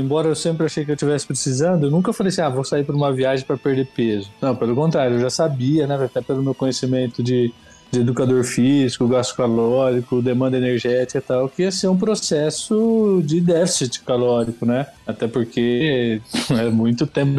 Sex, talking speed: male, 195 wpm